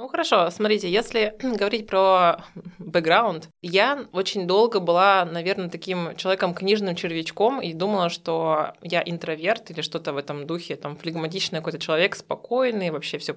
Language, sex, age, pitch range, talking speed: Russian, female, 20-39, 170-210 Hz, 145 wpm